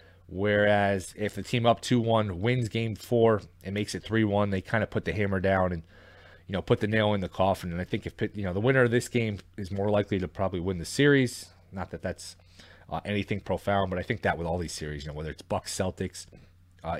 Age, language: 30-49, English